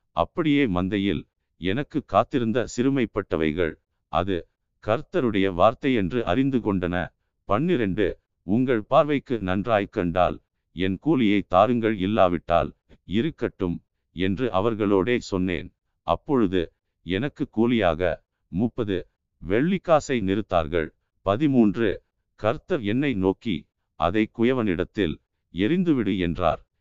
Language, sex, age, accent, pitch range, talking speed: Tamil, male, 50-69, native, 95-125 Hz, 80 wpm